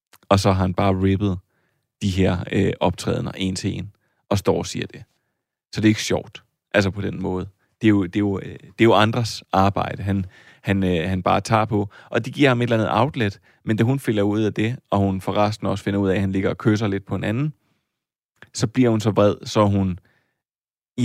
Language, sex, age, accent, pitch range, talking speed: Danish, male, 30-49, native, 95-115 Hz, 240 wpm